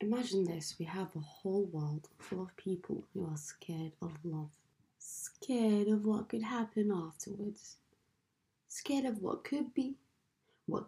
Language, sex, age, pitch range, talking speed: English, female, 20-39, 160-210 Hz, 150 wpm